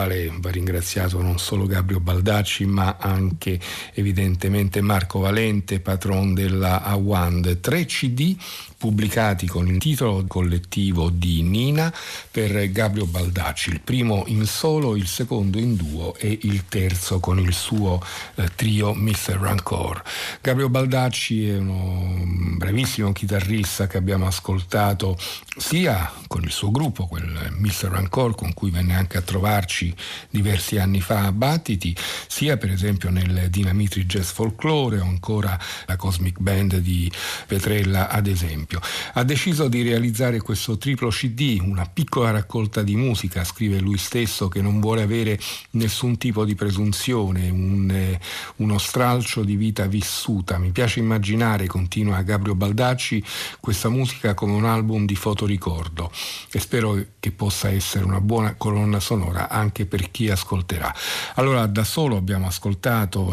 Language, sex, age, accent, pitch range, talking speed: Italian, male, 50-69, native, 95-110 Hz, 135 wpm